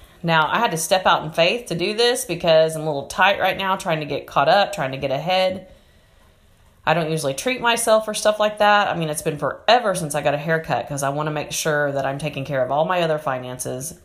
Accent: American